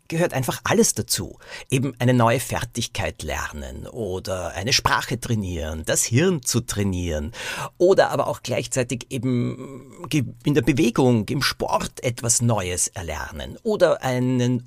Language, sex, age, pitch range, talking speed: German, male, 50-69, 110-140 Hz, 130 wpm